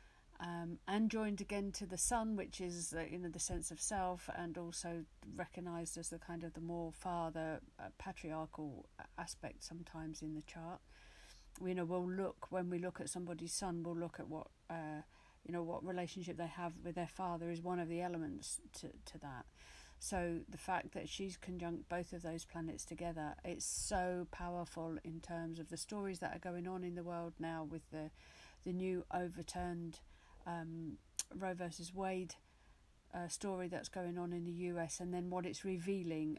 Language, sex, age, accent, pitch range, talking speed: English, female, 50-69, British, 160-180 Hz, 195 wpm